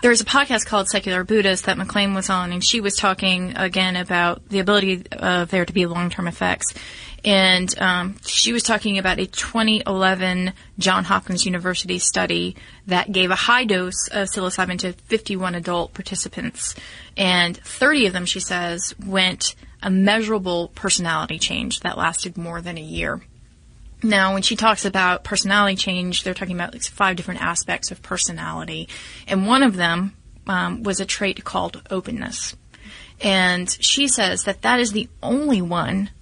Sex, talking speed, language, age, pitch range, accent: female, 165 wpm, English, 30-49, 180-205 Hz, American